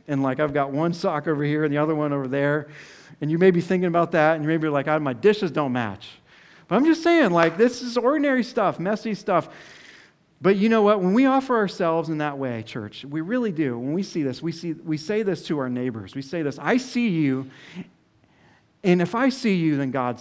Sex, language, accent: male, English, American